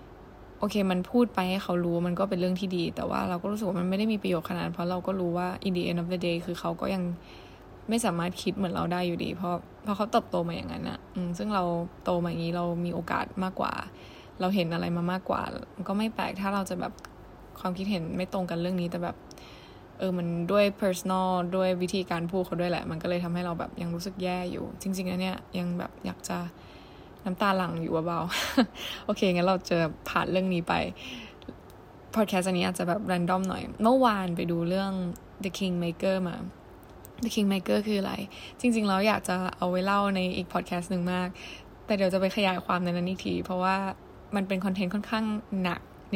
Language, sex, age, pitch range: Thai, female, 10-29, 175-195 Hz